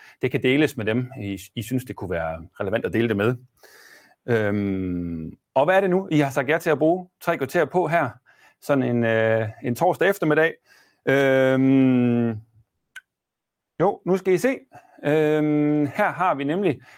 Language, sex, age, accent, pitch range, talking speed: Danish, male, 30-49, native, 105-155 Hz, 175 wpm